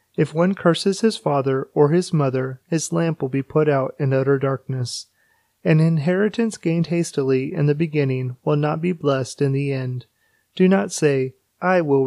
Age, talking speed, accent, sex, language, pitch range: 30-49, 180 wpm, American, male, English, 135-165 Hz